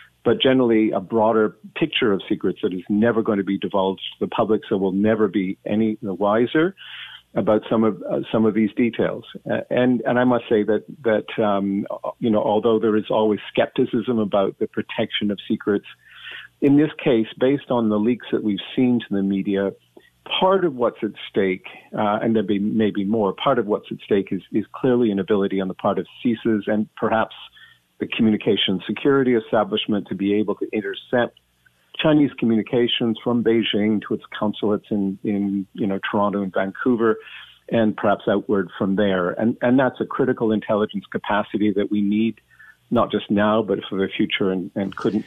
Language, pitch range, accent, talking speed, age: English, 100-115 Hz, American, 190 wpm, 50-69